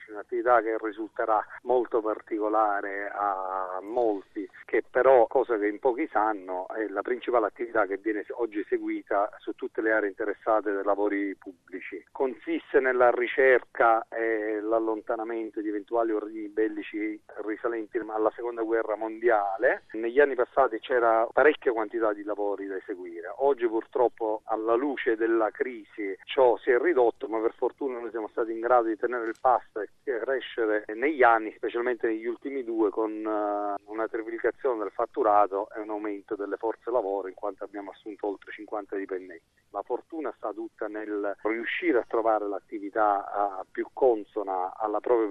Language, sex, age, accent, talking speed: Italian, male, 40-59, native, 150 wpm